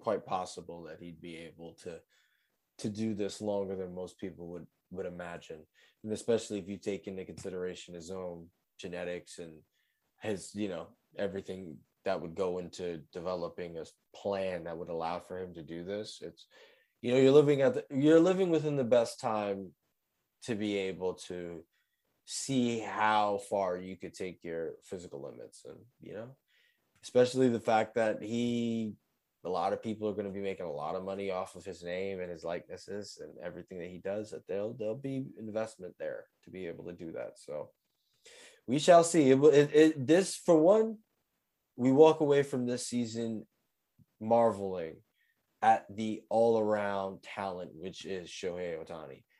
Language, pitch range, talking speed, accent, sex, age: English, 95-130 Hz, 170 wpm, American, male, 20-39